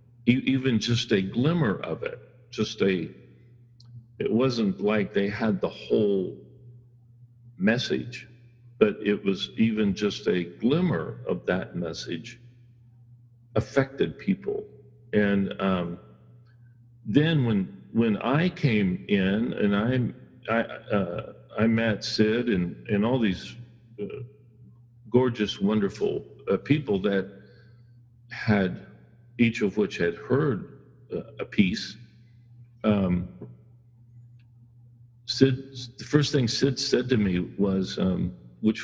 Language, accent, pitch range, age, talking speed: English, American, 105-120 Hz, 50-69, 110 wpm